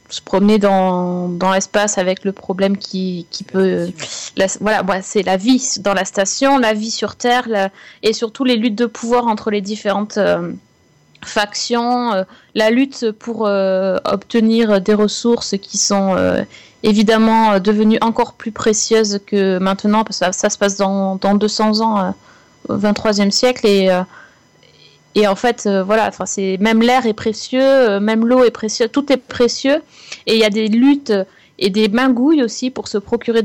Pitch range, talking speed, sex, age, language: 200-235 Hz, 185 wpm, female, 30-49, French